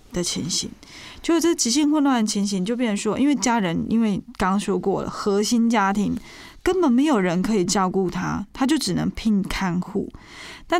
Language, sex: Chinese, female